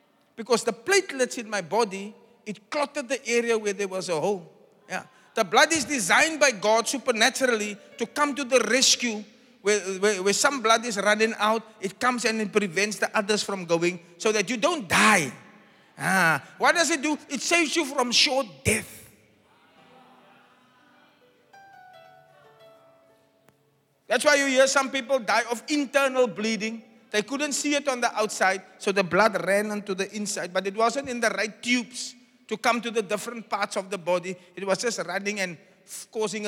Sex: male